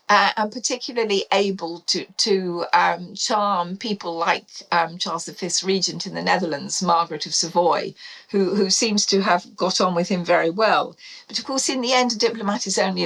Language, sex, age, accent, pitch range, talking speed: English, female, 50-69, British, 170-205 Hz, 190 wpm